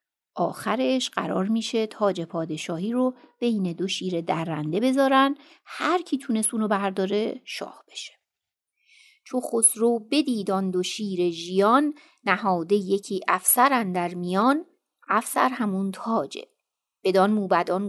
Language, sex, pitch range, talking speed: Persian, female, 185-250 Hz, 115 wpm